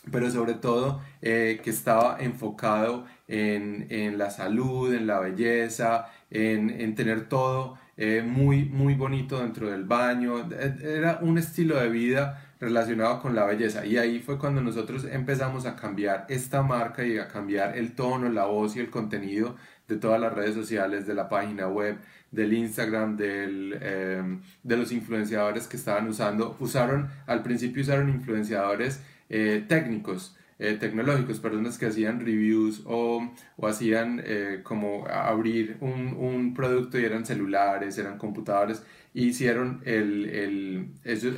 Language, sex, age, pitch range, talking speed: Spanish, male, 20-39, 110-125 Hz, 150 wpm